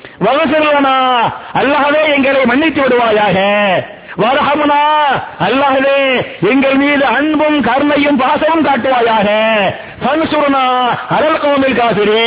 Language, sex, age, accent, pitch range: Tamil, male, 50-69, native, 225-285 Hz